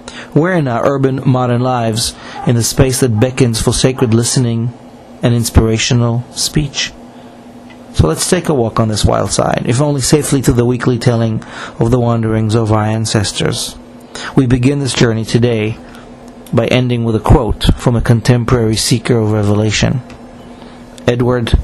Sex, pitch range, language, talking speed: male, 115-135 Hz, English, 155 wpm